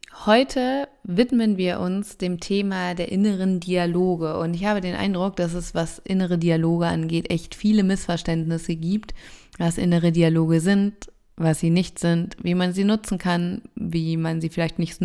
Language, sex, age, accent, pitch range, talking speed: German, female, 20-39, German, 170-190 Hz, 170 wpm